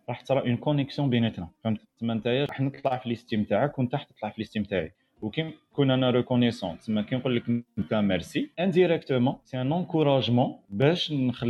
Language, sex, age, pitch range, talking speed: Arabic, male, 30-49, 110-145 Hz, 170 wpm